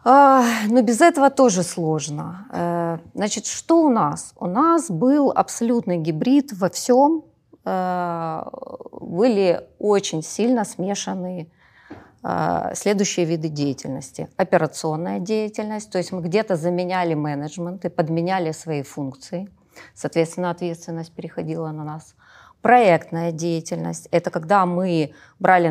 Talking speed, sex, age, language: 105 wpm, female, 30-49, Ukrainian